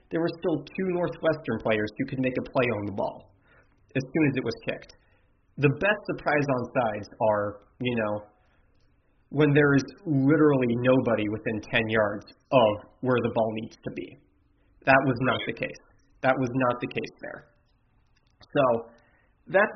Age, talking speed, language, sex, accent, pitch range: 30-49, 170 wpm, English, male, American, 115-145 Hz